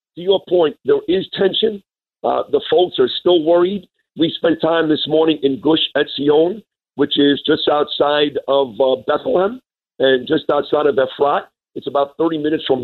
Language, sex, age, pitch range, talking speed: English, male, 50-69, 150-220 Hz, 175 wpm